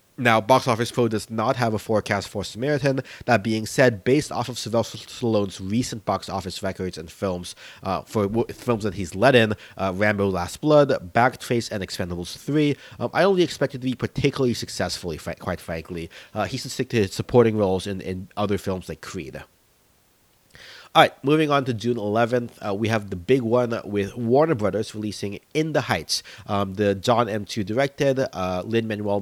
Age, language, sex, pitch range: 30-49, English, male, 95-125 Hz